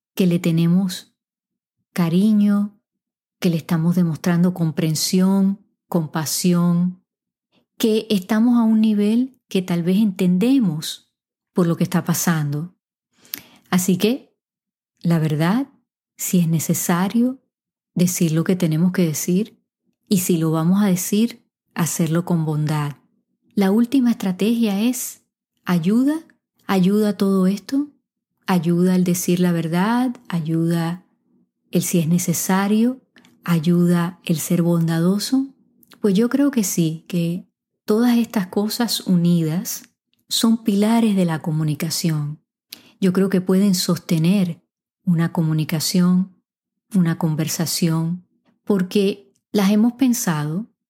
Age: 30-49